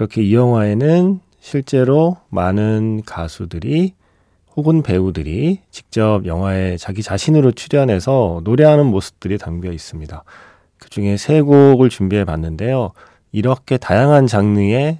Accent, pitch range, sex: native, 90-140 Hz, male